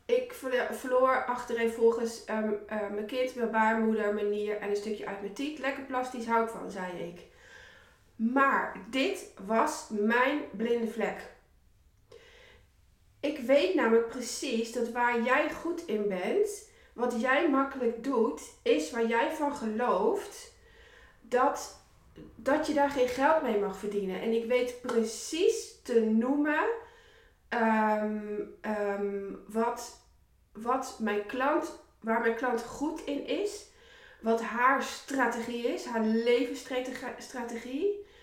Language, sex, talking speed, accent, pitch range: Dutch, female, 125 wpm, Dutch, 220-285 Hz